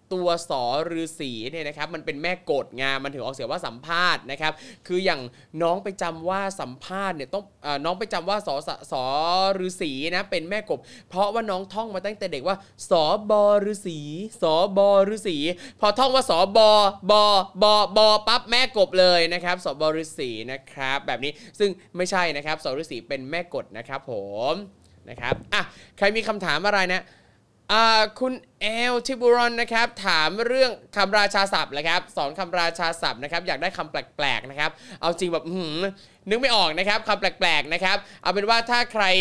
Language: Thai